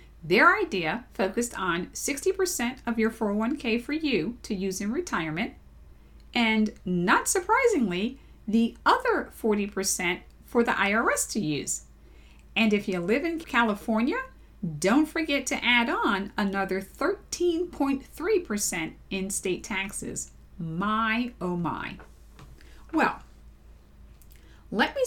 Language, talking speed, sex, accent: English, 110 wpm, female, American